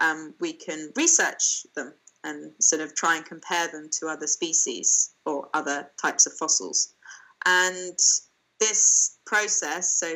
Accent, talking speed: British, 140 wpm